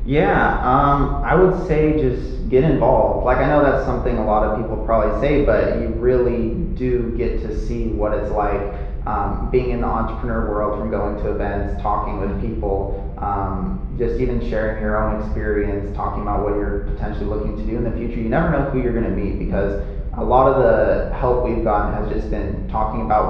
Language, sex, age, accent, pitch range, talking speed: English, male, 30-49, American, 100-115 Hz, 210 wpm